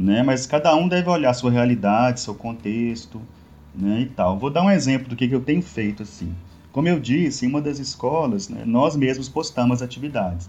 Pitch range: 110-145 Hz